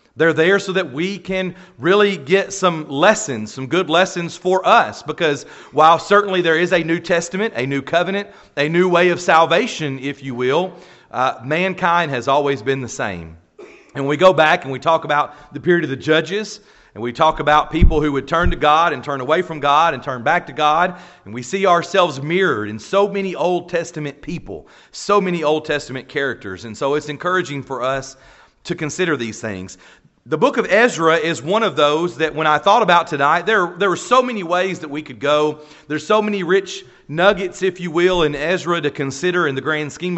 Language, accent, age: English, American, 40-59